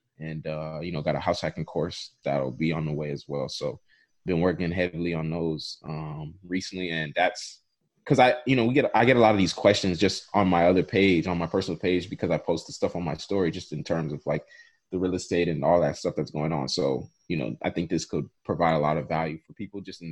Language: English